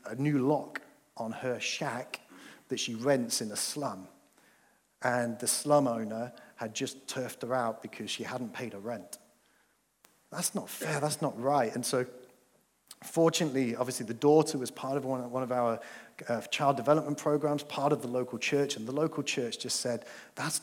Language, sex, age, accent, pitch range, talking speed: English, male, 40-59, British, 125-165 Hz, 175 wpm